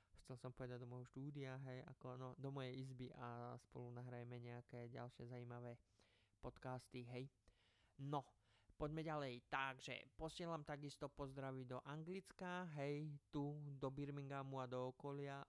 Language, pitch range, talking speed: Slovak, 125-140 Hz, 135 wpm